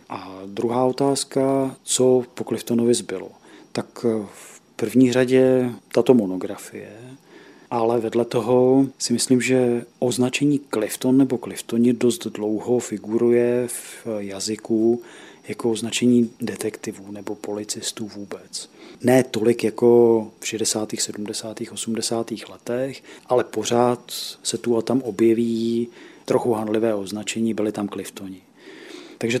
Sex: male